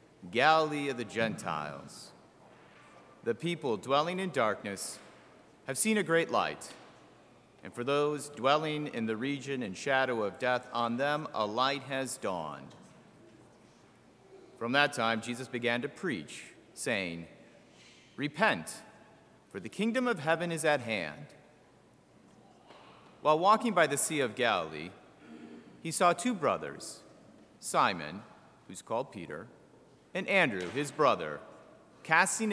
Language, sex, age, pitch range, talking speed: English, male, 40-59, 120-165 Hz, 125 wpm